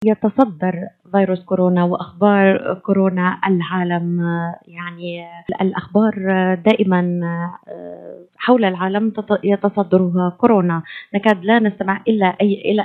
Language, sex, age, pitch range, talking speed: Arabic, female, 20-39, 180-210 Hz, 85 wpm